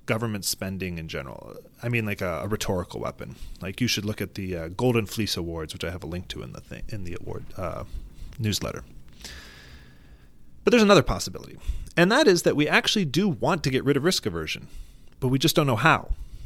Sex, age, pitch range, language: male, 30-49, 95-130 Hz, English